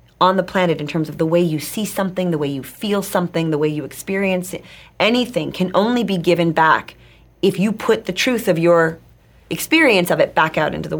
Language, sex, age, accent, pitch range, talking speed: English, female, 30-49, American, 145-185 Hz, 225 wpm